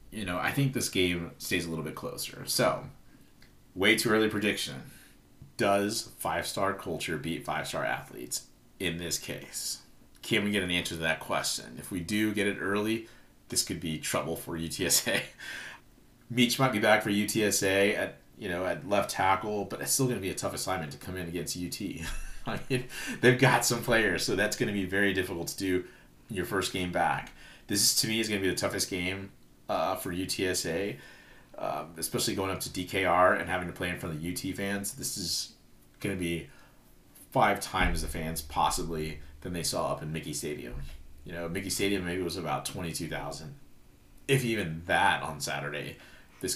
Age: 30-49